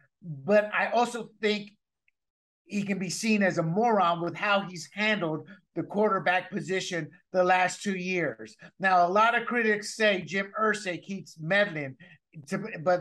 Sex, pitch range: male, 175-215 Hz